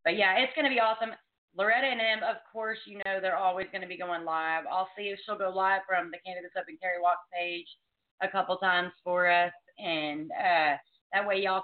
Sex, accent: female, American